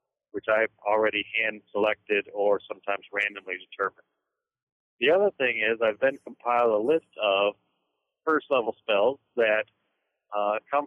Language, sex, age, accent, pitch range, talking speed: English, male, 40-59, American, 105-125 Hz, 140 wpm